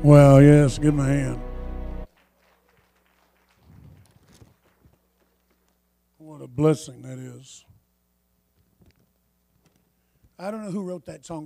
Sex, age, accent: male, 60-79, American